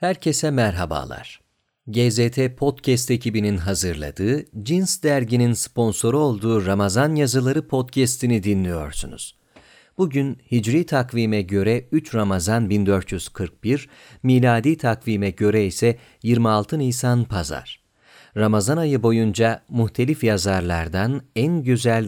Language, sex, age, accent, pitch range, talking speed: Turkish, male, 40-59, native, 105-130 Hz, 95 wpm